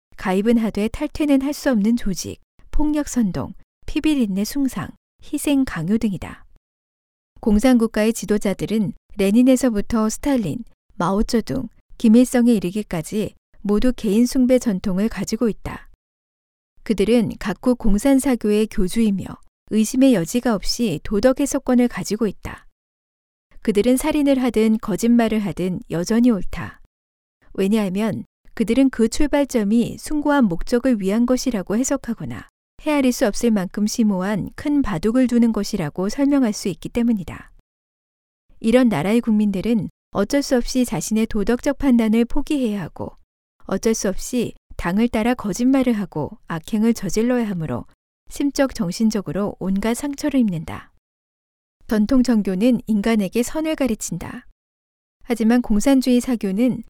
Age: 40-59